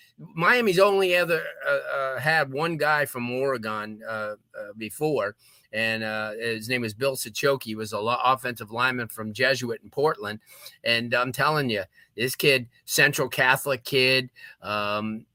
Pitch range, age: 115-150 Hz, 30-49